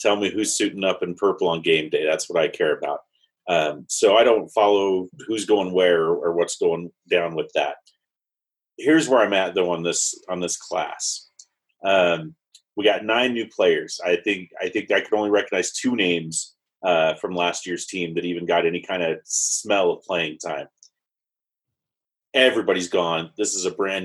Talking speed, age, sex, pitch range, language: 190 wpm, 30-49, male, 95-125 Hz, English